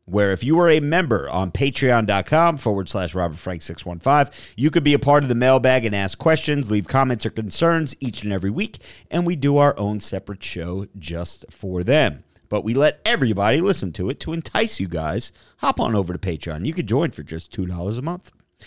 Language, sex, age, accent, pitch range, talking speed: English, male, 40-59, American, 100-145 Hz, 210 wpm